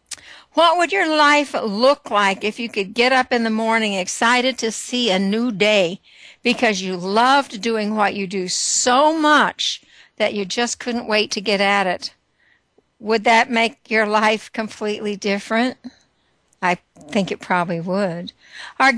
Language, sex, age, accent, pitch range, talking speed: English, female, 60-79, American, 205-245 Hz, 160 wpm